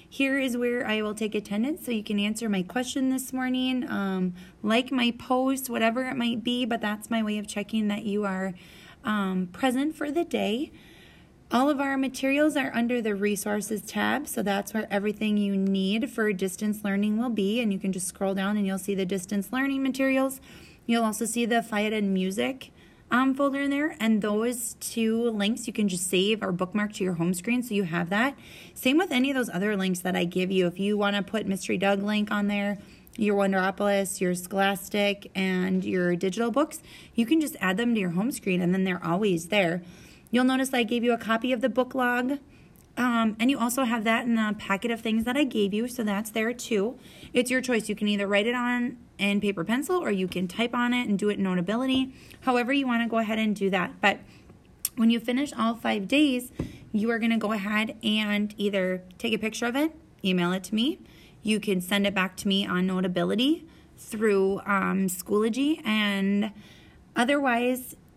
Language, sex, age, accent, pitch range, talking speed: English, female, 20-39, American, 200-245 Hz, 215 wpm